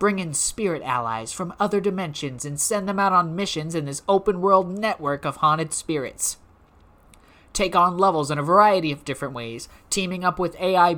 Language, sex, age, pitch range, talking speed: English, male, 20-39, 140-185 Hz, 180 wpm